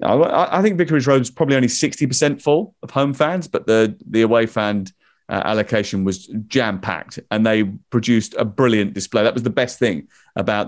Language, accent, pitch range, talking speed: English, British, 105-125 Hz, 185 wpm